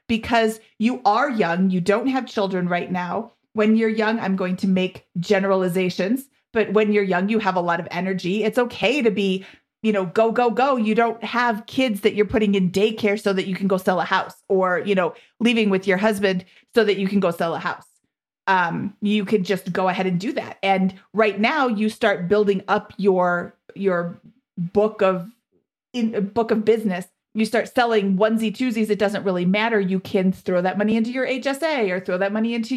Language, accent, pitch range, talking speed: English, American, 190-225 Hz, 210 wpm